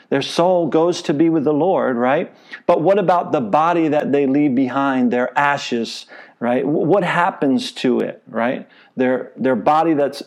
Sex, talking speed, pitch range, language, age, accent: male, 175 wpm, 140-175 Hz, English, 50-69, American